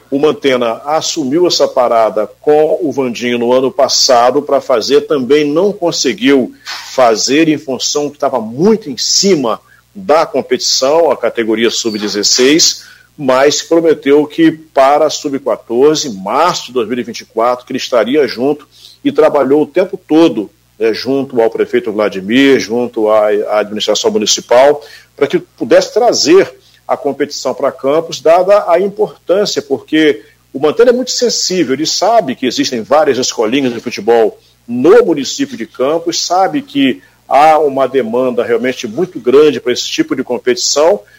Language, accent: Portuguese, Brazilian